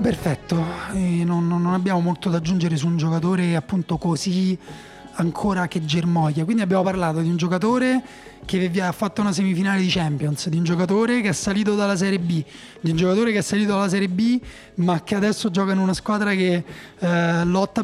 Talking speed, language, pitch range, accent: 190 wpm, Italian, 175-215 Hz, native